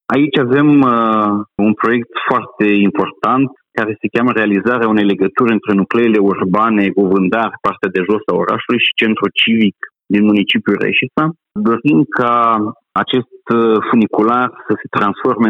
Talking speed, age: 135 wpm, 40-59